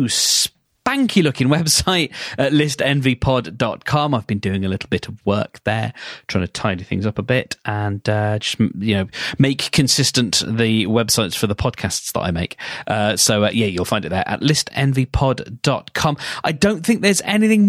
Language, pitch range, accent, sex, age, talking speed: English, 105-150 Hz, British, male, 30-49, 175 wpm